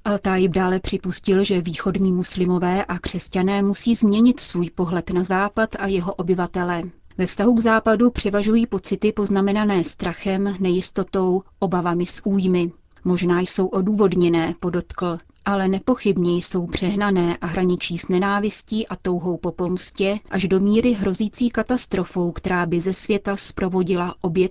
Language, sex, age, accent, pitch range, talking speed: Czech, female, 30-49, native, 180-205 Hz, 135 wpm